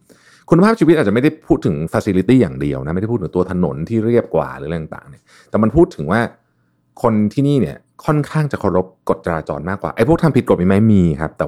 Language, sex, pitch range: Thai, male, 80-125 Hz